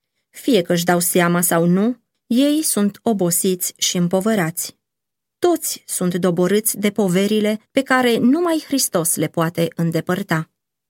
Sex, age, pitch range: female, 20-39, 170-235 Hz